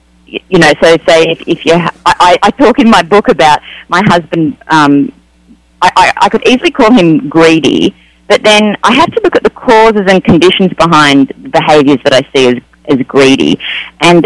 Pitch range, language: 150-225 Hz, English